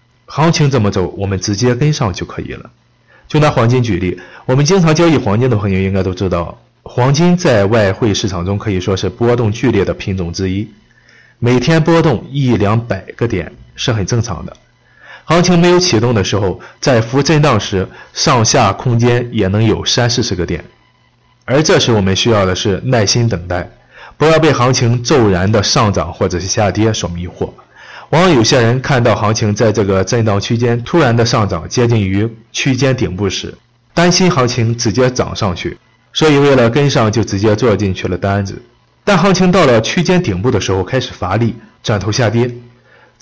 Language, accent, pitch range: Chinese, native, 100-125 Hz